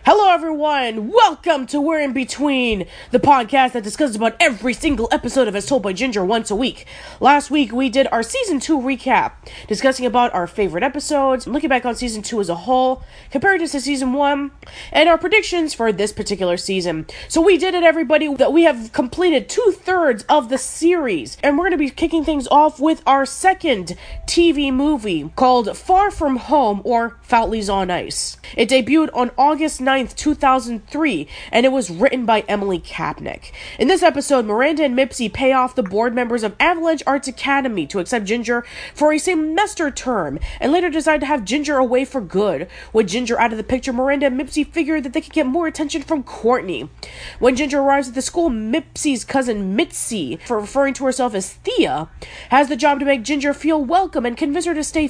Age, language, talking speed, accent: 20-39, English, 195 wpm, American